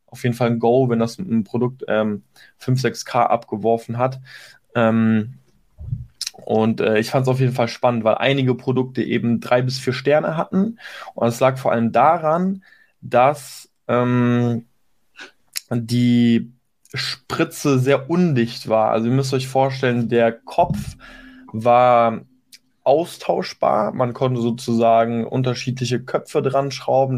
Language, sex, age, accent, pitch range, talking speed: German, male, 20-39, German, 115-130 Hz, 140 wpm